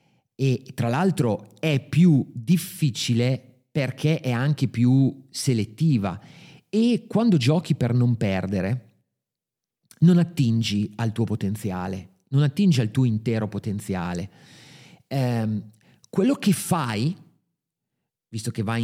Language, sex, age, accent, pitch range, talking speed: Italian, male, 40-59, native, 115-165 Hz, 110 wpm